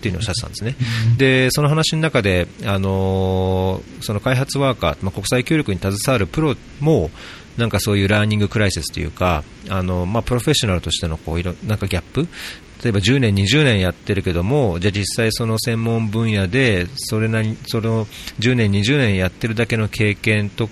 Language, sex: Japanese, male